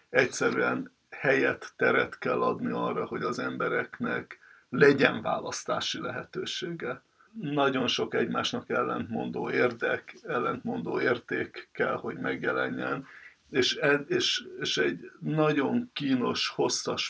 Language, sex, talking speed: Hungarian, male, 95 wpm